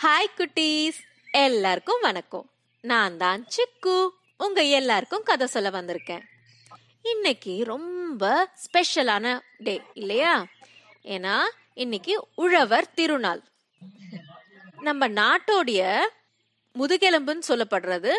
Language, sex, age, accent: Tamil, female, 20-39, native